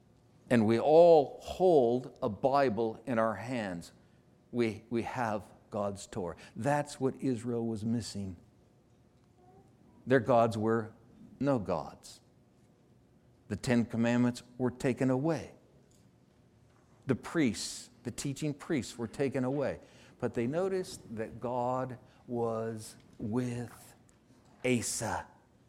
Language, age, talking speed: English, 60-79, 105 wpm